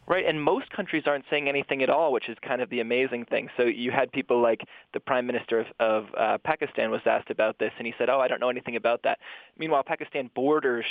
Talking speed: 250 wpm